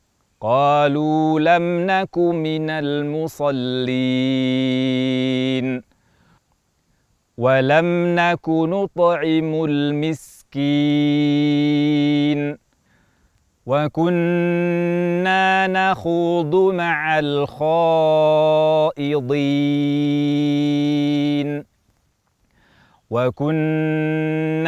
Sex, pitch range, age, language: male, 130-160 Hz, 40-59, Indonesian